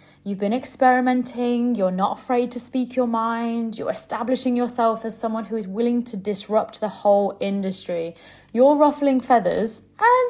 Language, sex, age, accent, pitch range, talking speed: English, female, 20-39, British, 205-255 Hz, 155 wpm